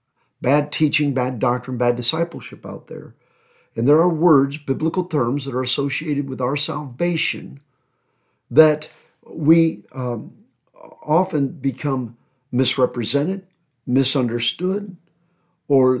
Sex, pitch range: male, 125-160 Hz